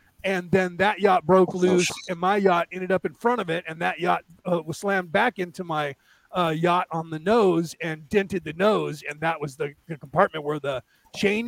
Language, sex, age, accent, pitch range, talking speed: English, male, 30-49, American, 165-200 Hz, 215 wpm